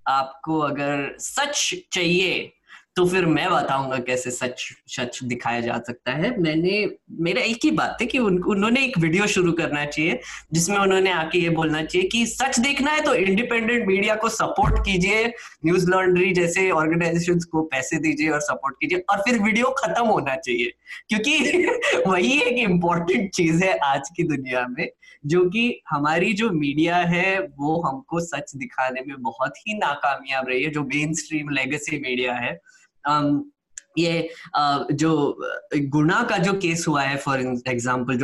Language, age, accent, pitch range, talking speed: Hindi, 20-39, native, 145-210 Hz, 150 wpm